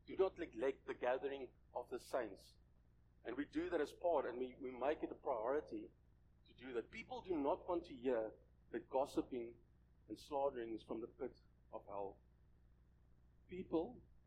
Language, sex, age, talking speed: English, male, 50-69, 175 wpm